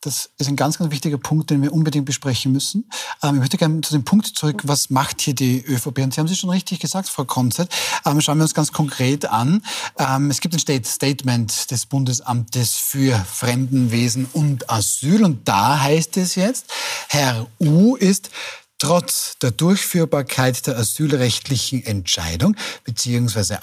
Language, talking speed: German, 170 wpm